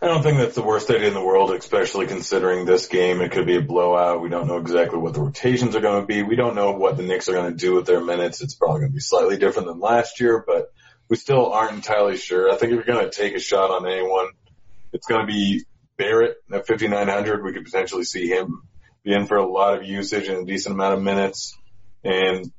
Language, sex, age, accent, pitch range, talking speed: English, male, 30-49, American, 95-120 Hz, 255 wpm